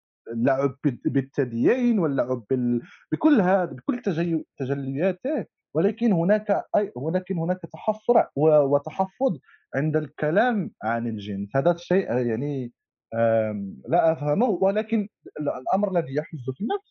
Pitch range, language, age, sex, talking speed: 120-185 Hz, Arabic, 30-49, male, 105 wpm